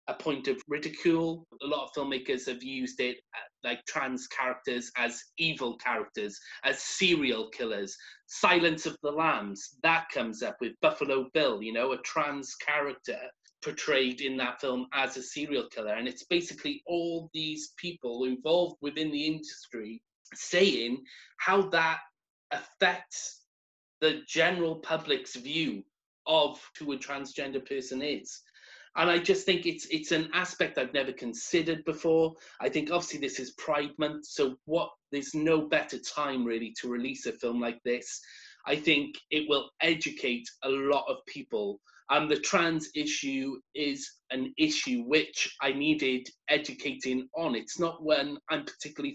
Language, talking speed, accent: English, 155 wpm, British